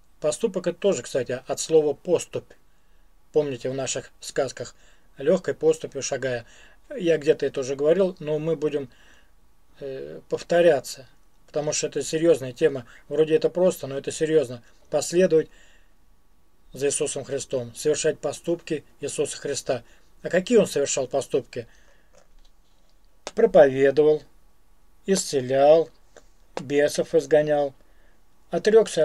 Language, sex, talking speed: Russian, male, 105 wpm